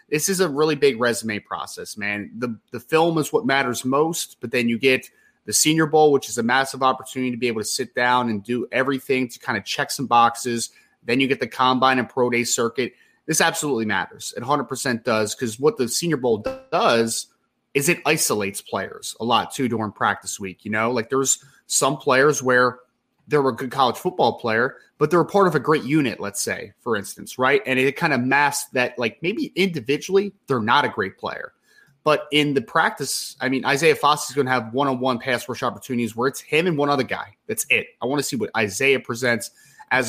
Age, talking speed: 30-49, 220 wpm